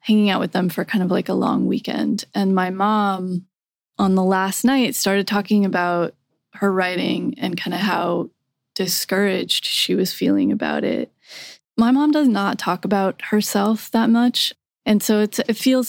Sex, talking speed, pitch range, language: female, 175 wpm, 185-225 Hz, English